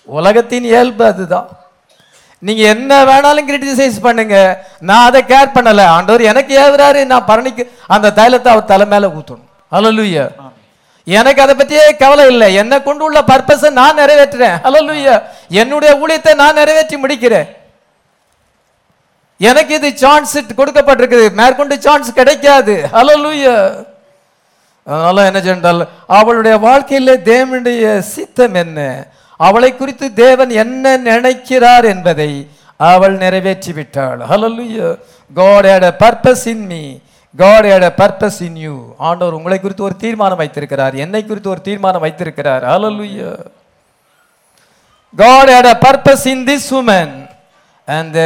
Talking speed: 105 wpm